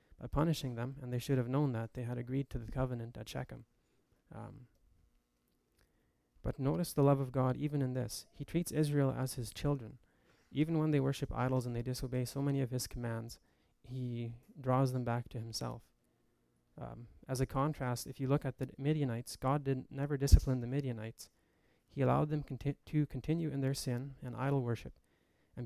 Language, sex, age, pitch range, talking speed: English, male, 20-39, 120-140 Hz, 190 wpm